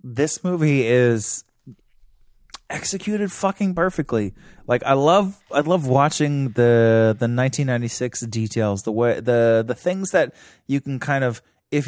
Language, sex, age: English, male, 20-39